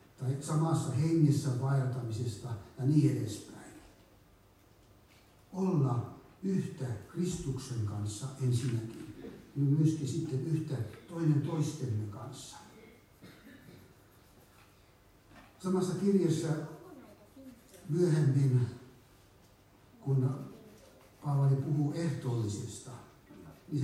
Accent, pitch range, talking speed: native, 115-150 Hz, 70 wpm